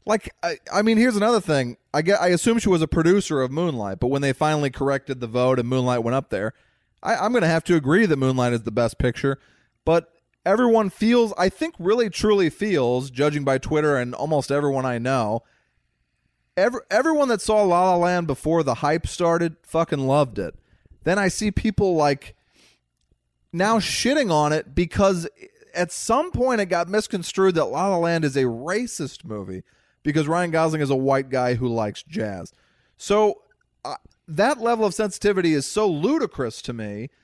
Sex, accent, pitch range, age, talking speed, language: male, American, 135-210 Hz, 20-39, 185 wpm, English